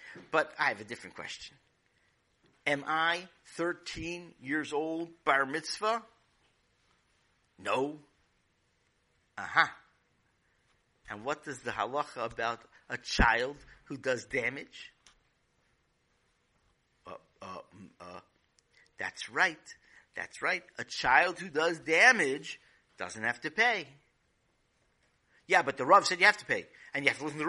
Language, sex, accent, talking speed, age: English, male, American, 130 wpm, 50-69